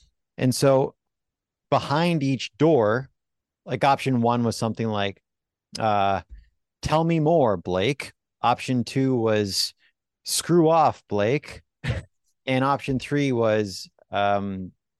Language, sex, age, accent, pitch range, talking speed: English, male, 30-49, American, 110-135 Hz, 110 wpm